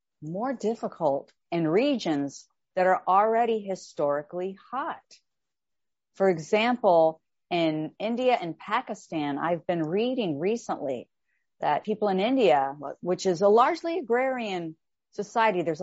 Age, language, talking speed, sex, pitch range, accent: 40-59, English, 115 wpm, female, 165-225 Hz, American